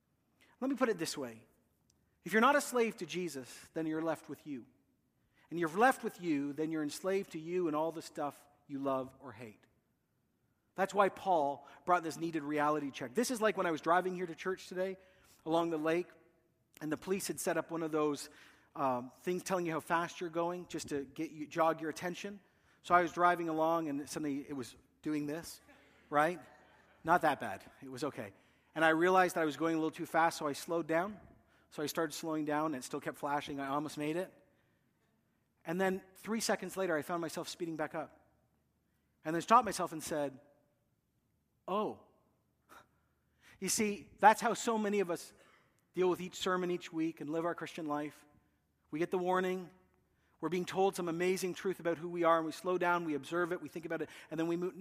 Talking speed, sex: 210 wpm, male